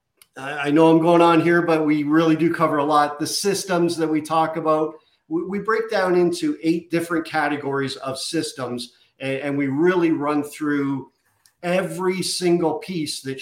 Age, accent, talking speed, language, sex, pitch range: 50-69, American, 165 wpm, English, male, 135-160 Hz